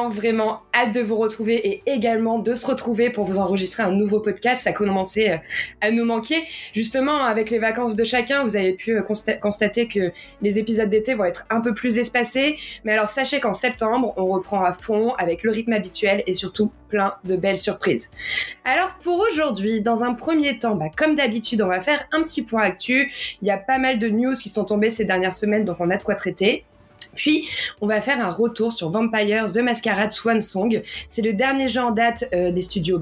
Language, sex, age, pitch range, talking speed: French, female, 20-39, 200-245 Hz, 215 wpm